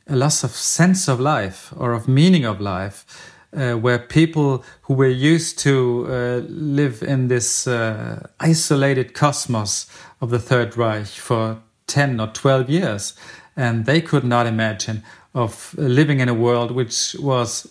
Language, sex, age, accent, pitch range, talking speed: English, male, 40-59, German, 115-140 Hz, 155 wpm